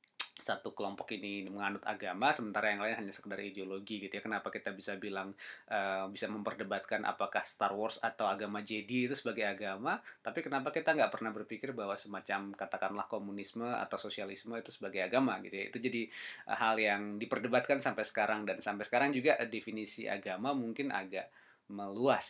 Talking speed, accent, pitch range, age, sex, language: 170 wpm, native, 100-120 Hz, 20-39, male, Indonesian